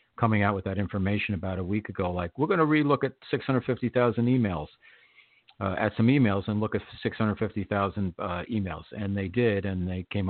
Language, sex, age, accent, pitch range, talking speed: English, male, 50-69, American, 95-120 Hz, 185 wpm